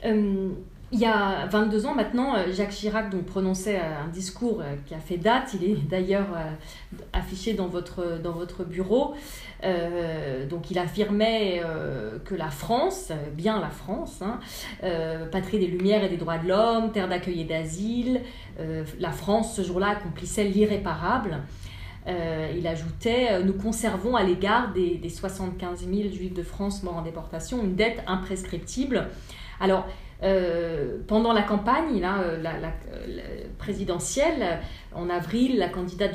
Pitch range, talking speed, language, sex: 170-215 Hz, 145 wpm, French, female